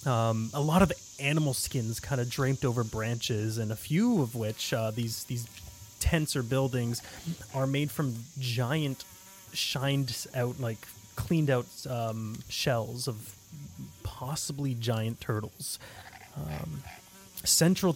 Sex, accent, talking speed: male, American, 130 wpm